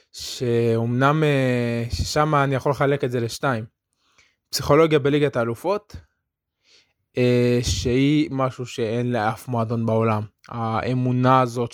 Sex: male